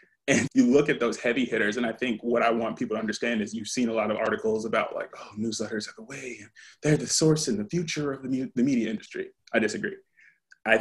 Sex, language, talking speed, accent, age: male, English, 245 wpm, American, 20-39